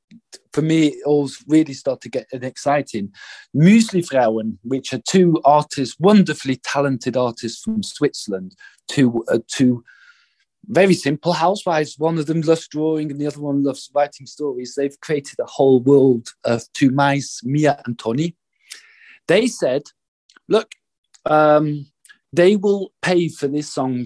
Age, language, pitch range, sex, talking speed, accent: 40-59, English, 135-170 Hz, male, 145 wpm, British